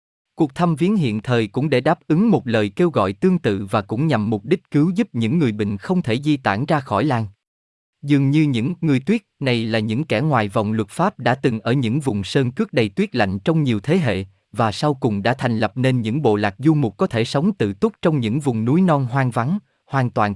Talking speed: 250 wpm